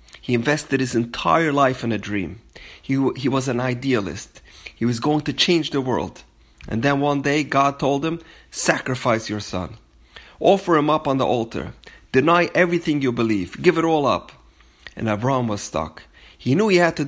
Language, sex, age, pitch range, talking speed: English, male, 30-49, 105-150 Hz, 185 wpm